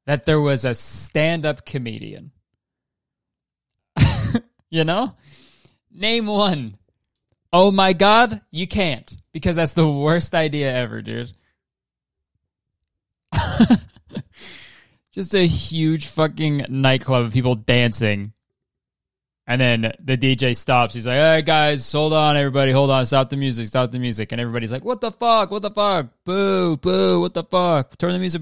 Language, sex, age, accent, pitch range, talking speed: English, male, 20-39, American, 120-165 Hz, 145 wpm